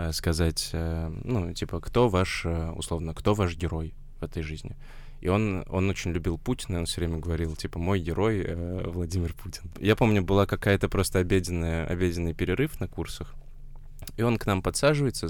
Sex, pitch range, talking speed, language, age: male, 80-100 Hz, 165 wpm, Russian, 20-39